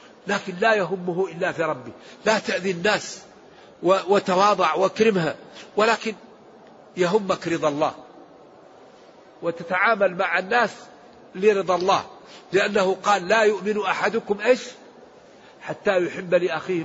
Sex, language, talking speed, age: male, Arabic, 105 wpm, 60-79